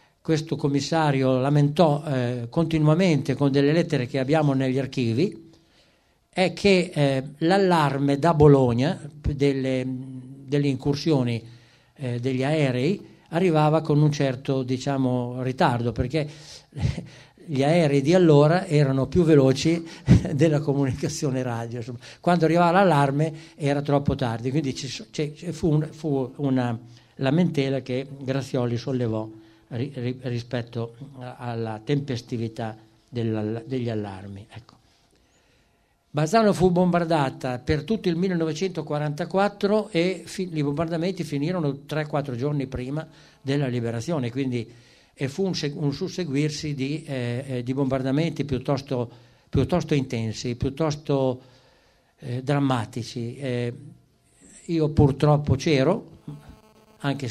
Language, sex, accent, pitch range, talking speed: Italian, male, native, 125-155 Hz, 105 wpm